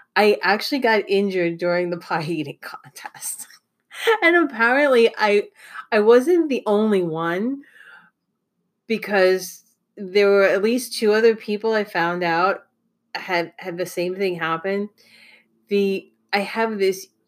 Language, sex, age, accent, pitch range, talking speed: English, female, 30-49, American, 170-215 Hz, 130 wpm